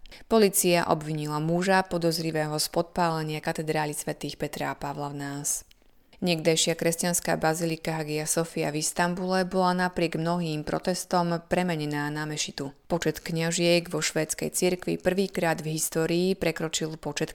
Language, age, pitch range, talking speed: Slovak, 20-39, 155-180 Hz, 130 wpm